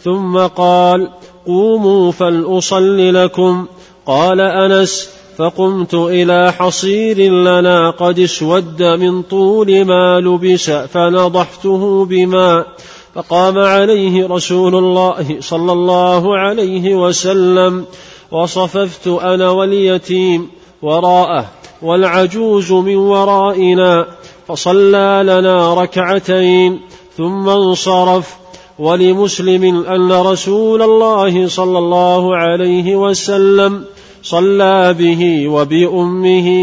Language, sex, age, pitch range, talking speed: Arabic, male, 40-59, 180-195 Hz, 80 wpm